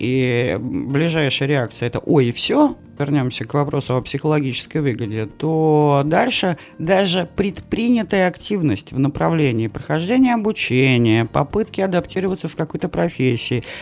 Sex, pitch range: male, 135-190 Hz